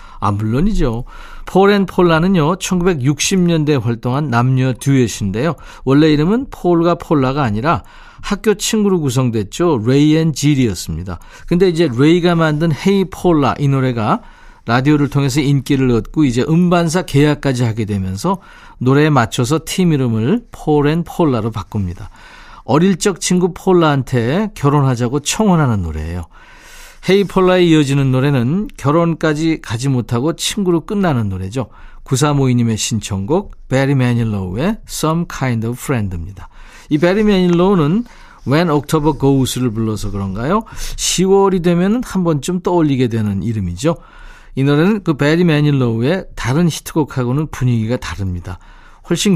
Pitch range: 120-175 Hz